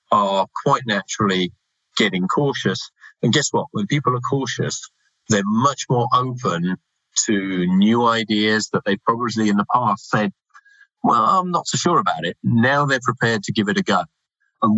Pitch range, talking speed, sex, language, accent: 100-125 Hz, 170 wpm, male, English, British